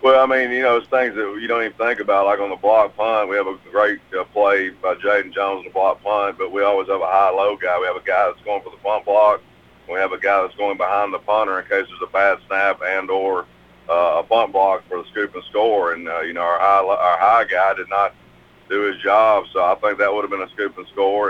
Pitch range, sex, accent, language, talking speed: 90-105 Hz, male, American, English, 275 wpm